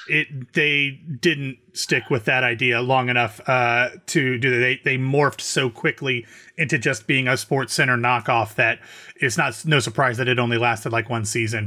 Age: 30-49